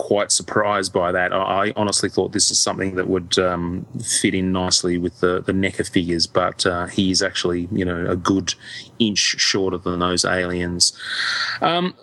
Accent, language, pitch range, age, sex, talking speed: Australian, English, 95-125 Hz, 30-49, male, 175 wpm